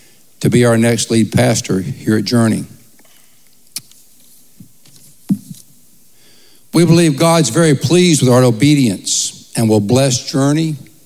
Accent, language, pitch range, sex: American, English, 110-145 Hz, male